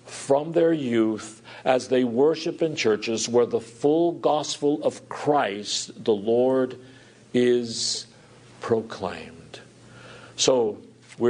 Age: 60-79